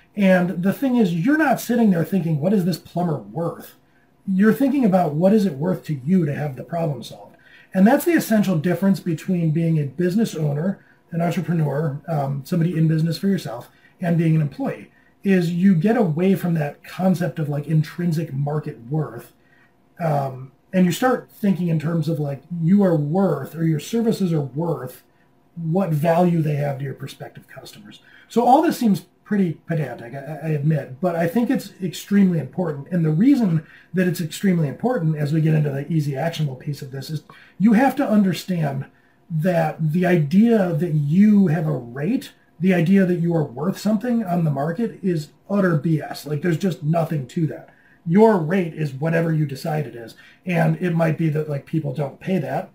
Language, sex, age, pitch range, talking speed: English, male, 30-49, 155-190 Hz, 190 wpm